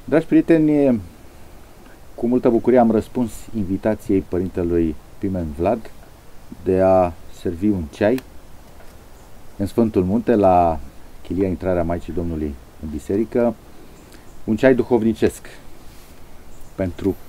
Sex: male